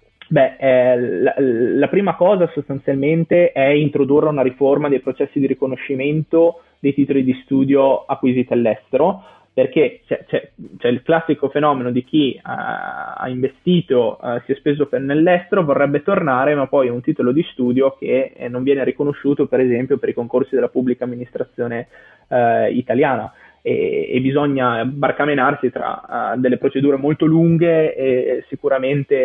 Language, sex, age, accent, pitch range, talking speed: Italian, male, 20-39, native, 125-150 Hz, 145 wpm